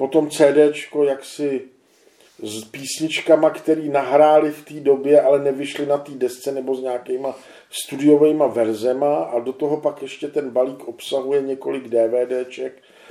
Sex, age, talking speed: male, 50-69, 135 wpm